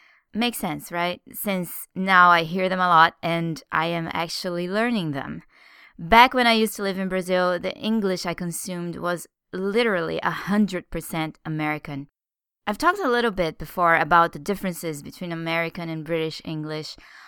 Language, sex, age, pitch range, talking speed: English, female, 20-39, 160-210 Hz, 160 wpm